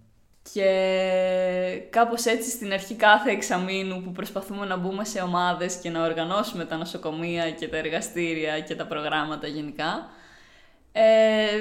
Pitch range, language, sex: 170-205 Hz, Greek, female